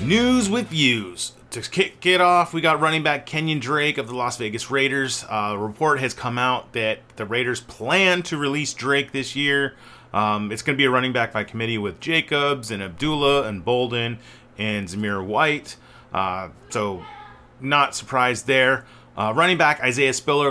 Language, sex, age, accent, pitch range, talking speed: English, male, 30-49, American, 120-150 Hz, 180 wpm